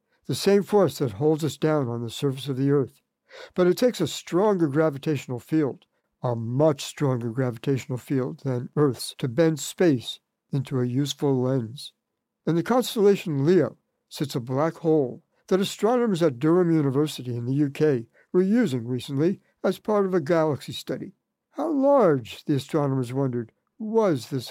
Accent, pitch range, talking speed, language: American, 140-180 Hz, 160 wpm, English